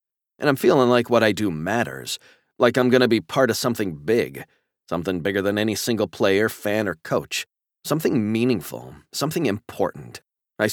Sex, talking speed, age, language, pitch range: male, 170 wpm, 40-59, English, 95-110 Hz